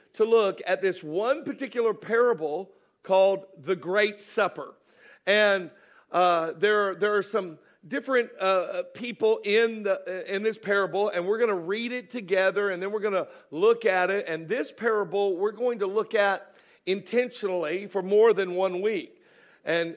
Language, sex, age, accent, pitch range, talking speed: English, male, 50-69, American, 185-235 Hz, 165 wpm